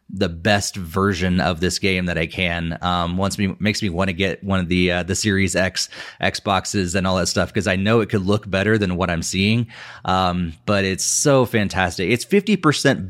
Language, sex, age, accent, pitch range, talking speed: English, male, 20-39, American, 90-105 Hz, 220 wpm